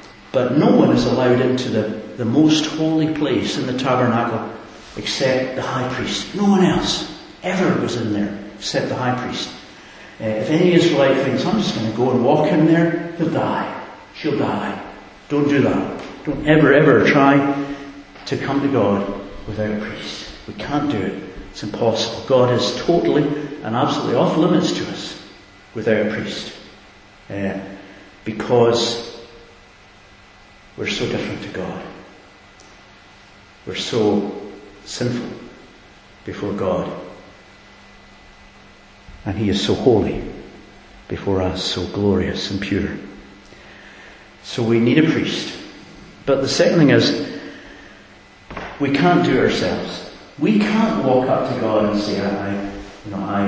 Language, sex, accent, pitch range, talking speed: English, male, British, 100-135 Hz, 145 wpm